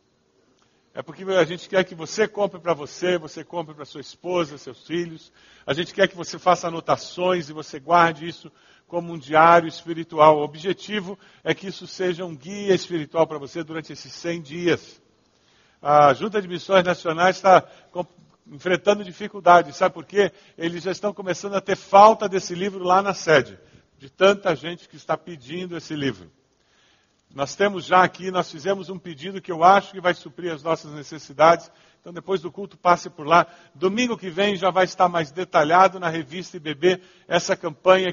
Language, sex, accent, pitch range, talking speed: Portuguese, male, Brazilian, 165-190 Hz, 180 wpm